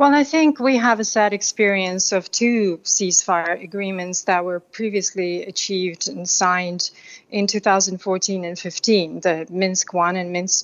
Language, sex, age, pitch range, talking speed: English, female, 30-49, 185-215 Hz, 150 wpm